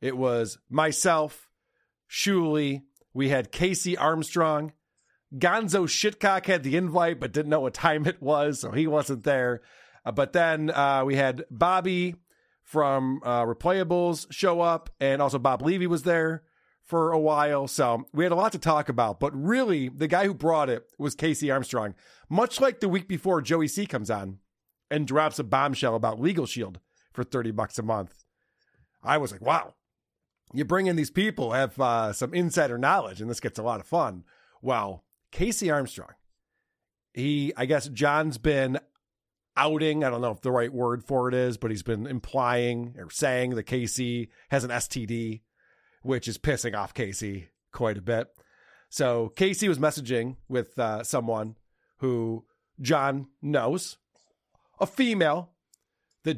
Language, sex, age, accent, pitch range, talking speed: English, male, 40-59, American, 120-160 Hz, 165 wpm